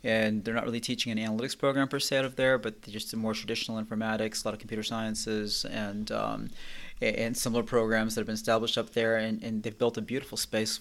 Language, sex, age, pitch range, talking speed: English, male, 30-49, 110-120 Hz, 235 wpm